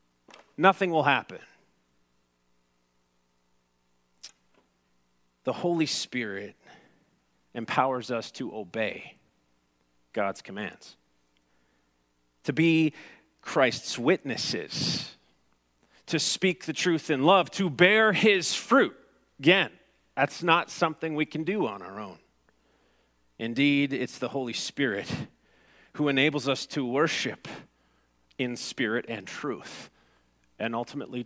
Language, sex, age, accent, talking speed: English, male, 40-59, American, 100 wpm